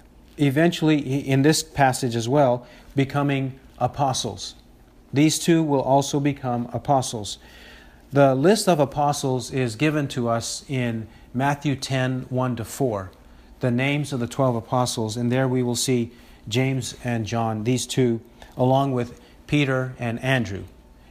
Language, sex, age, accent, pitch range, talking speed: English, male, 40-59, American, 115-145 Hz, 135 wpm